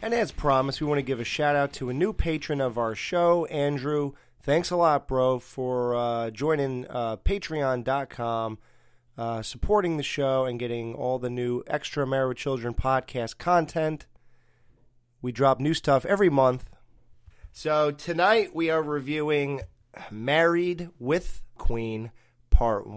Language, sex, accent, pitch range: English, male, American, 120-145 Hz